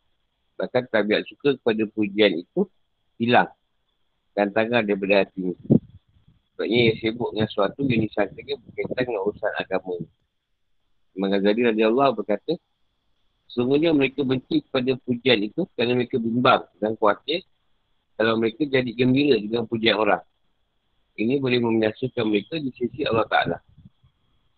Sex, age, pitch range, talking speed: male, 50-69, 105-130 Hz, 125 wpm